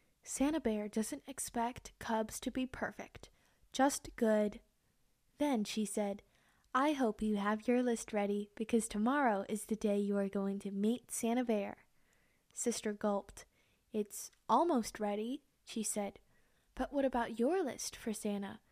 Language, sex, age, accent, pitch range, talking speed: English, female, 10-29, American, 215-255 Hz, 145 wpm